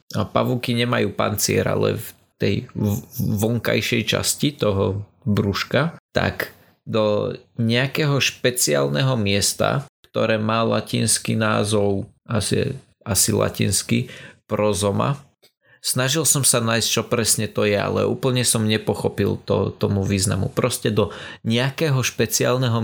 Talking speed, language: 120 wpm, Slovak